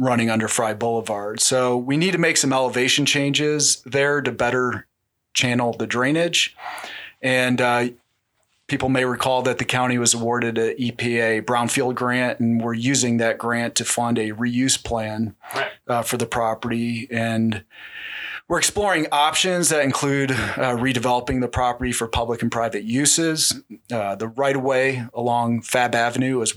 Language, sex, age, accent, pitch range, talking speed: English, male, 30-49, American, 115-130 Hz, 155 wpm